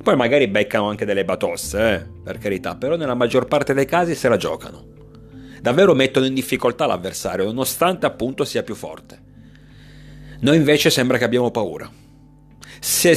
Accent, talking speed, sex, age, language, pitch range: native, 160 wpm, male, 40-59, Italian, 100-145 Hz